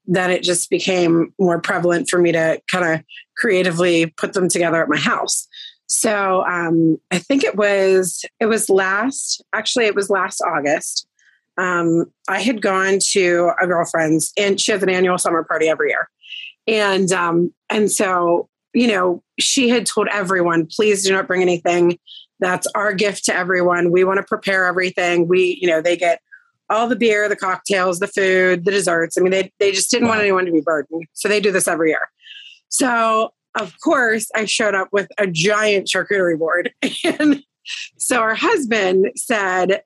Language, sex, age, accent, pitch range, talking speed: English, female, 30-49, American, 175-220 Hz, 180 wpm